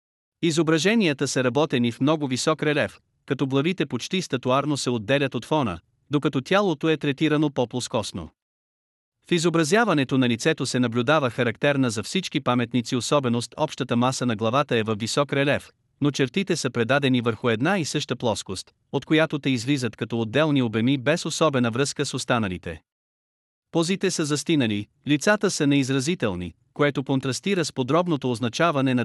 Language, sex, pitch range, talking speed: Bulgarian, male, 120-155 Hz, 150 wpm